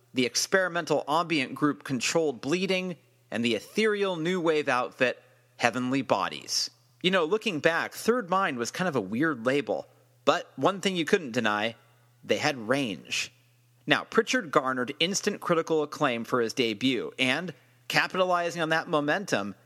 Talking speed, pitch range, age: 150 wpm, 130-180 Hz, 40-59